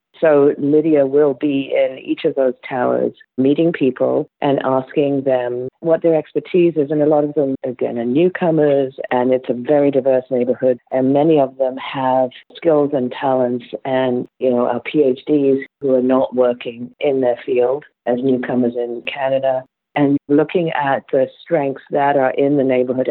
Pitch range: 125-140 Hz